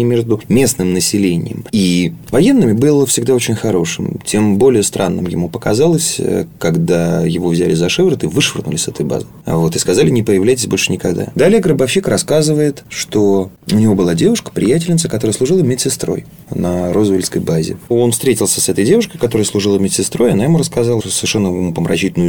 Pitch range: 85-130 Hz